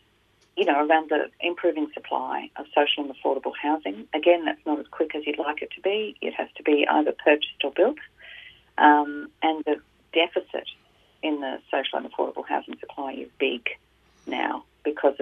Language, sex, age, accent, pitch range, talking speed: English, female, 40-59, Australian, 135-155 Hz, 180 wpm